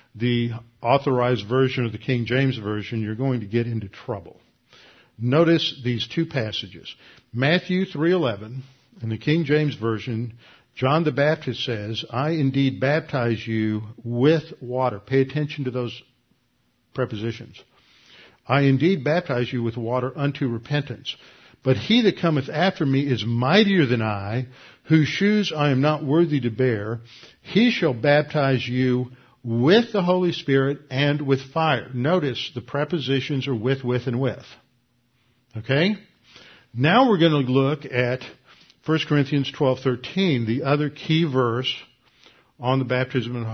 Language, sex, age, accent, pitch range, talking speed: English, male, 50-69, American, 120-150 Hz, 140 wpm